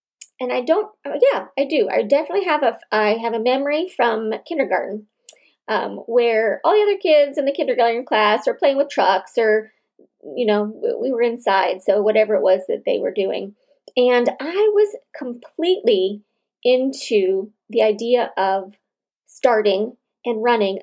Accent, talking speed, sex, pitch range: American, 160 wpm, female, 215-320 Hz